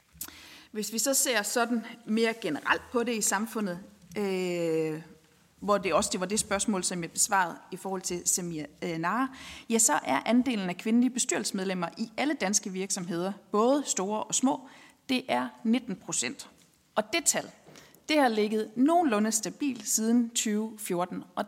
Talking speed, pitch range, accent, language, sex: 160 wpm, 195-245 Hz, native, Danish, female